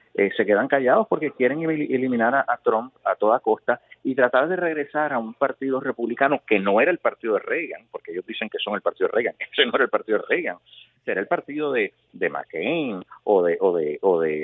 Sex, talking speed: male, 235 wpm